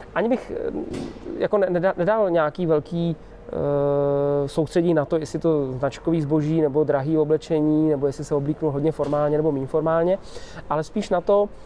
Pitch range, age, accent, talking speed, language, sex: 150-190 Hz, 20-39, native, 155 wpm, Czech, male